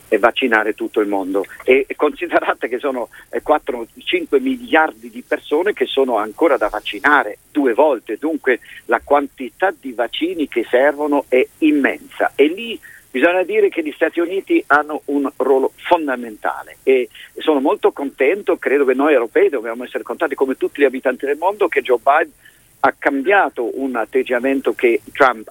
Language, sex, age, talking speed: Italian, male, 50-69, 160 wpm